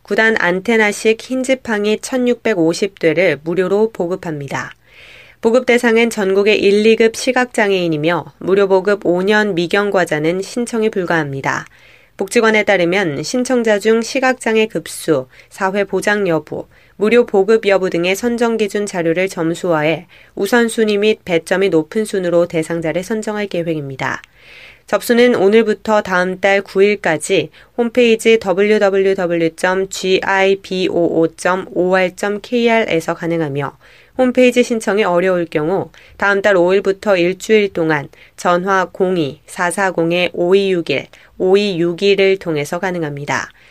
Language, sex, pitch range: Korean, female, 170-220 Hz